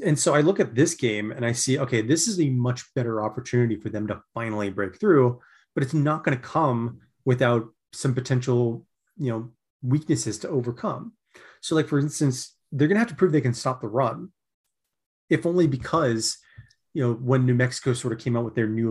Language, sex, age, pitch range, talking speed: English, male, 30-49, 110-135 Hz, 215 wpm